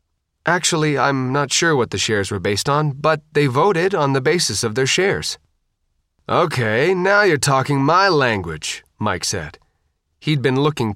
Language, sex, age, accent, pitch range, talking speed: English, male, 30-49, American, 115-150 Hz, 165 wpm